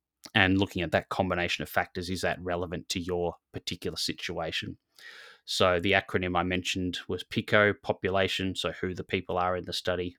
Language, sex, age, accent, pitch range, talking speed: English, male, 20-39, Australian, 85-95 Hz, 175 wpm